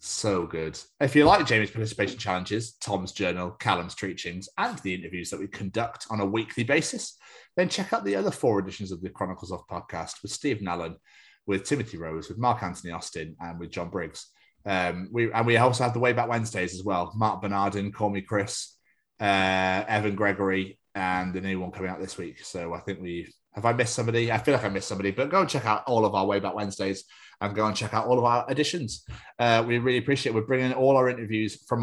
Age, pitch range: 30-49, 95-125 Hz